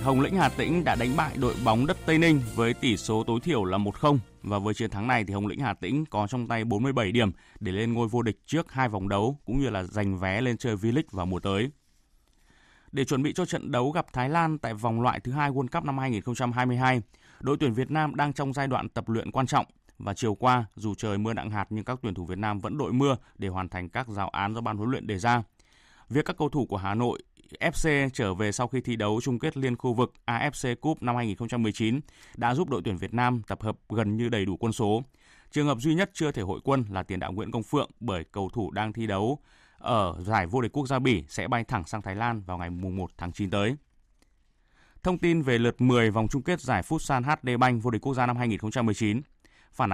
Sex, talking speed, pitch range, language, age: male, 250 wpm, 105-130 Hz, Vietnamese, 20-39